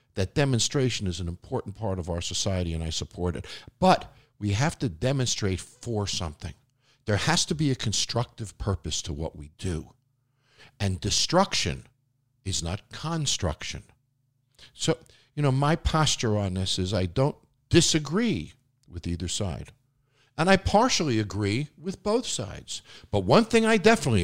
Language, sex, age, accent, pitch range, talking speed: English, male, 50-69, American, 95-140 Hz, 155 wpm